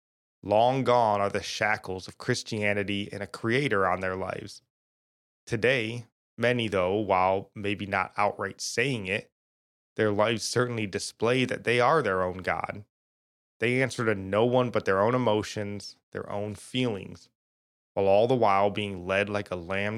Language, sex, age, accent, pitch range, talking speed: English, male, 20-39, American, 95-115 Hz, 160 wpm